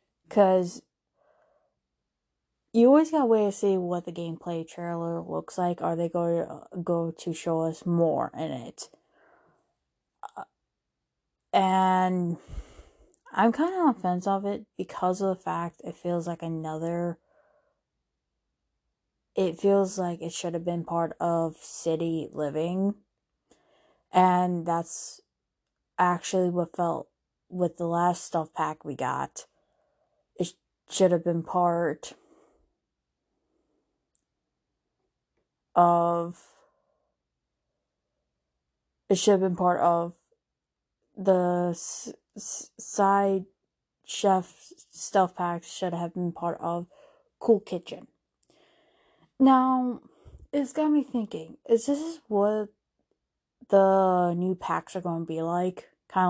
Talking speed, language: 110 wpm, English